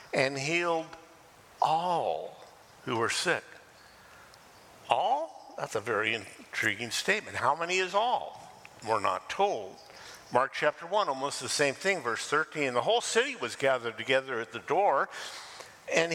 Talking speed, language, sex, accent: 140 wpm, English, male, American